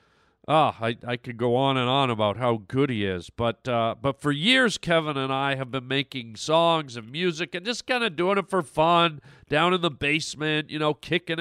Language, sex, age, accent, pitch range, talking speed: English, male, 50-69, American, 145-195 Hz, 225 wpm